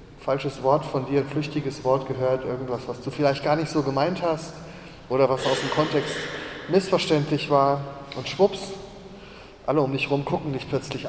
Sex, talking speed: male, 180 wpm